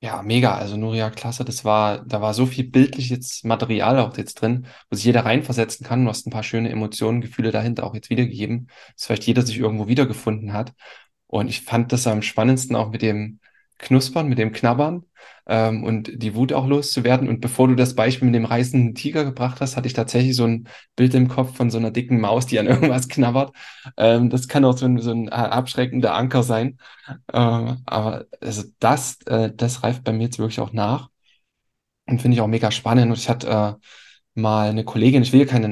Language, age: German, 10-29